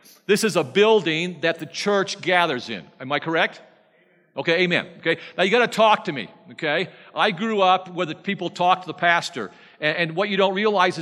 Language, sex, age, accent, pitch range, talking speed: English, male, 50-69, American, 160-205 Hz, 200 wpm